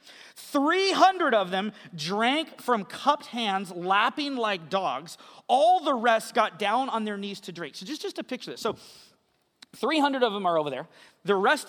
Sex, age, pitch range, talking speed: male, 30-49, 195-270 Hz, 180 wpm